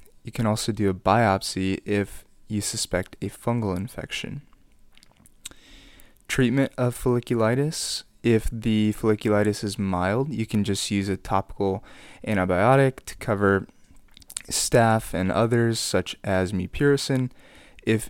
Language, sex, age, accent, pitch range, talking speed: English, male, 20-39, American, 100-120 Hz, 120 wpm